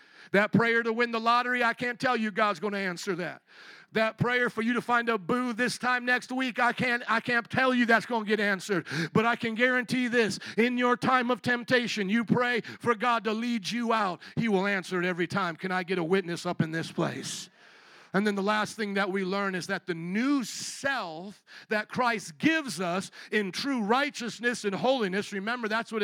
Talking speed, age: 220 wpm, 50-69